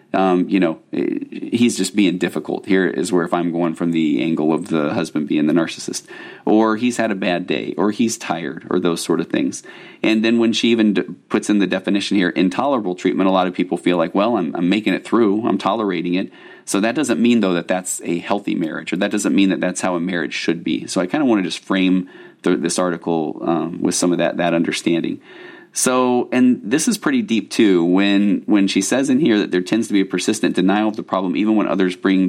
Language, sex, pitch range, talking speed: English, male, 90-115 Hz, 245 wpm